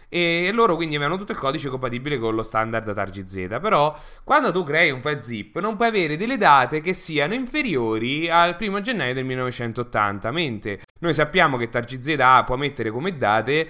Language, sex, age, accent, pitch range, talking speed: Italian, male, 20-39, native, 125-175 Hz, 180 wpm